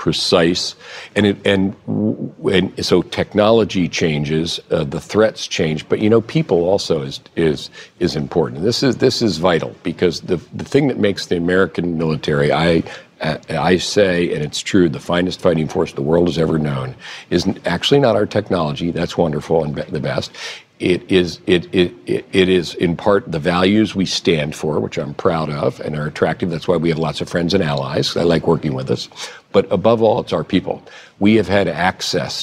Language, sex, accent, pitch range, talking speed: English, male, American, 80-100 Hz, 195 wpm